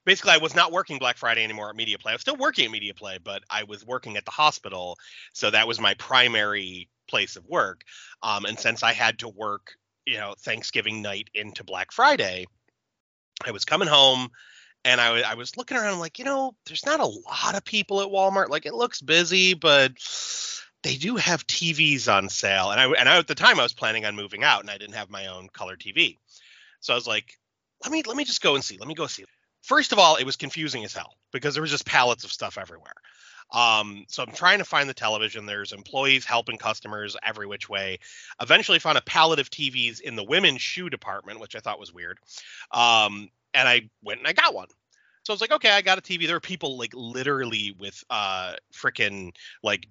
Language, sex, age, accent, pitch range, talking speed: English, male, 30-49, American, 105-175 Hz, 230 wpm